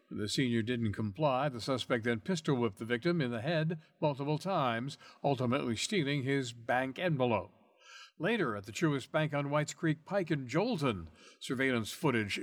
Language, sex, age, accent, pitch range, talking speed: English, male, 60-79, American, 125-160 Hz, 165 wpm